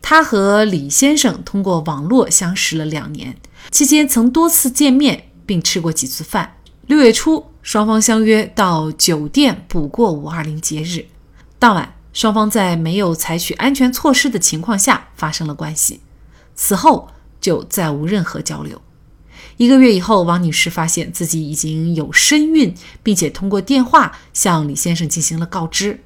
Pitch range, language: 160-245 Hz, Chinese